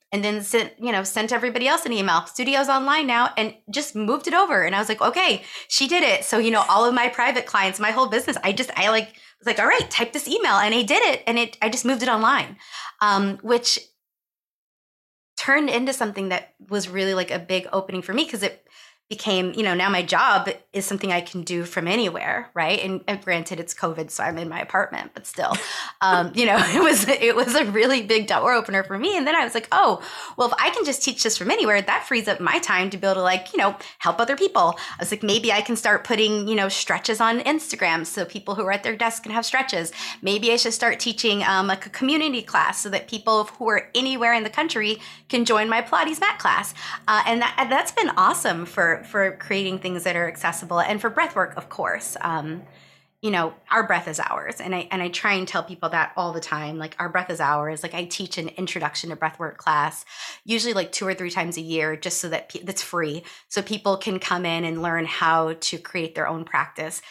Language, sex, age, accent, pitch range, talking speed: English, female, 20-39, American, 180-235 Hz, 240 wpm